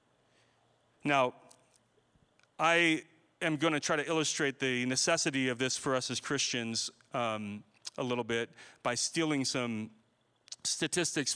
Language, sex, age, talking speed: English, male, 30-49, 120 wpm